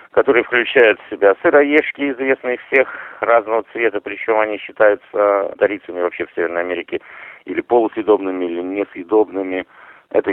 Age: 50-69